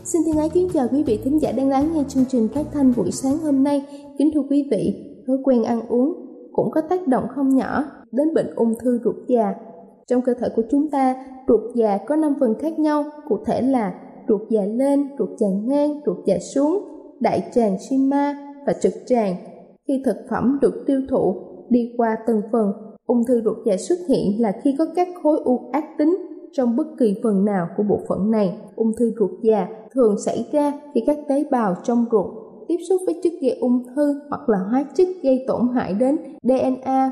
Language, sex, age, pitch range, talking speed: Vietnamese, female, 20-39, 220-285 Hz, 215 wpm